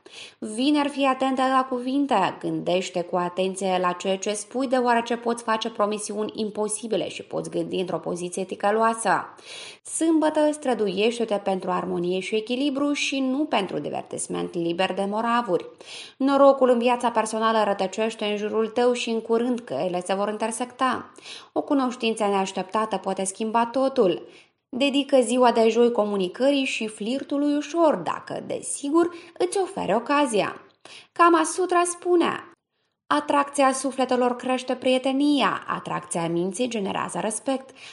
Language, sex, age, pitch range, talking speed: Romanian, female, 20-39, 205-275 Hz, 130 wpm